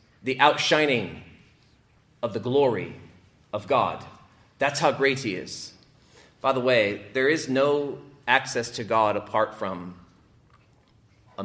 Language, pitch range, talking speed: English, 100-125 Hz, 125 wpm